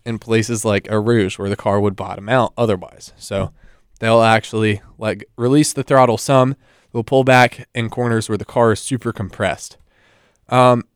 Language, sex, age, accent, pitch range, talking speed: English, male, 20-39, American, 105-130 Hz, 175 wpm